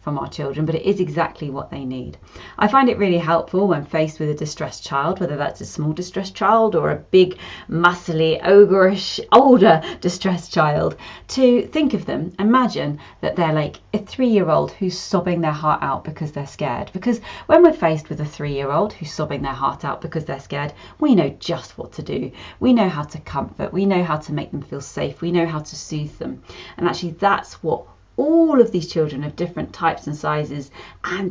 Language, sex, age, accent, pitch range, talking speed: English, female, 30-49, British, 145-185 Hz, 205 wpm